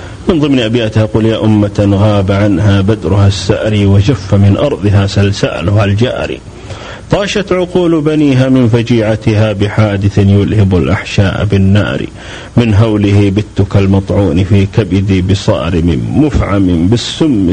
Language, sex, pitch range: Arabic, male, 100-125 Hz